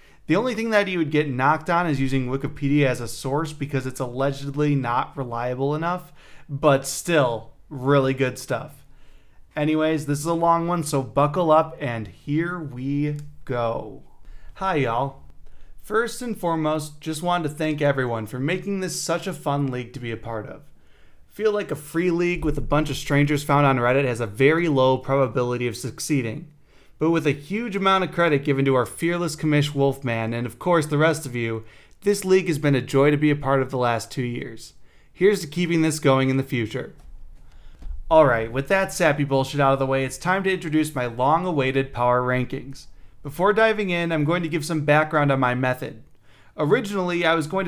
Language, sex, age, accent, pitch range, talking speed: English, male, 30-49, American, 130-165 Hz, 200 wpm